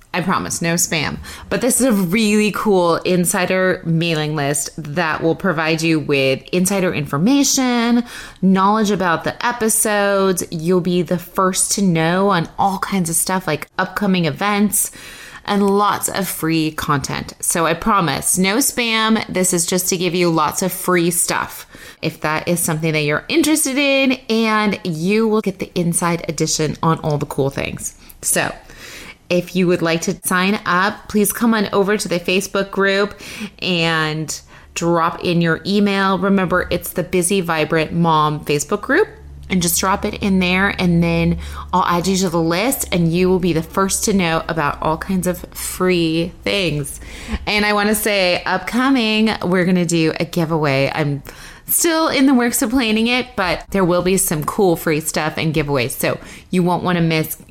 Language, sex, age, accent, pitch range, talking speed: English, female, 20-39, American, 165-205 Hz, 175 wpm